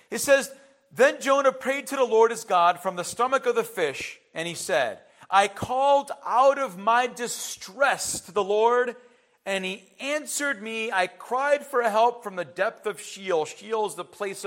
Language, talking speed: English, 185 wpm